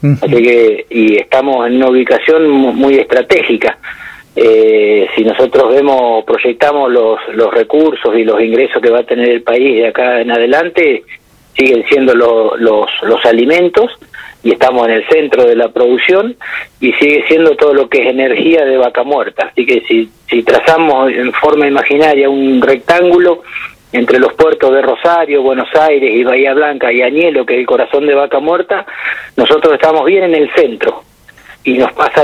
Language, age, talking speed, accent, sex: Spanish, 40-59, 175 wpm, Argentinian, male